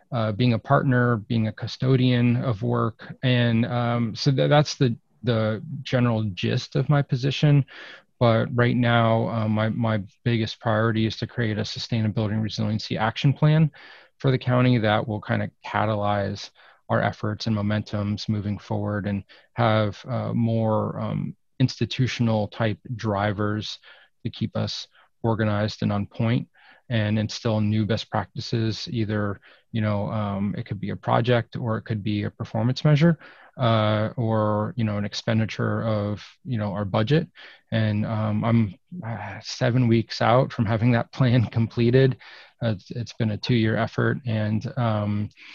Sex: male